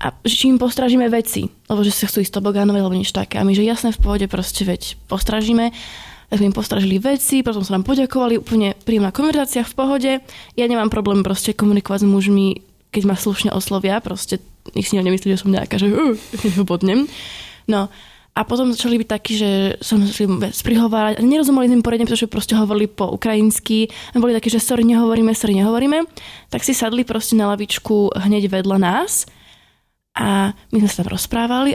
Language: Slovak